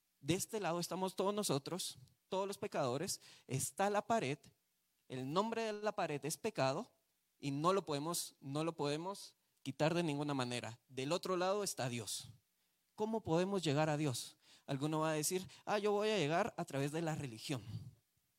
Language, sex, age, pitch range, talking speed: Spanish, male, 30-49, 130-190 Hz, 175 wpm